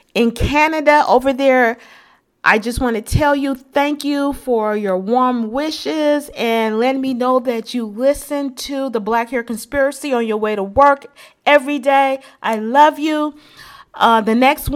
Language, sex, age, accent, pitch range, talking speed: English, female, 40-59, American, 225-285 Hz, 165 wpm